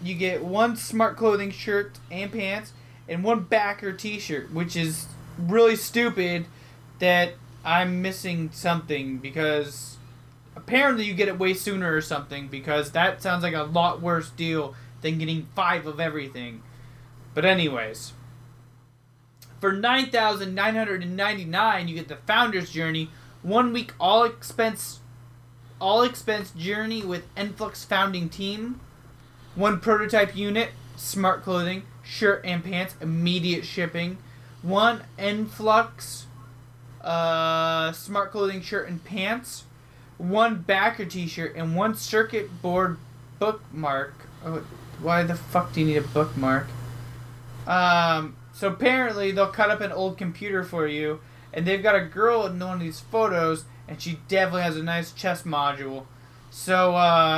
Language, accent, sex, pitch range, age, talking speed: English, American, male, 135-195 Hz, 20-39, 135 wpm